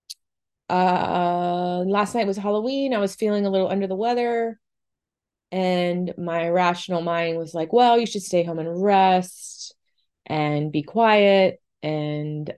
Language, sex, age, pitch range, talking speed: English, female, 20-39, 160-210 Hz, 145 wpm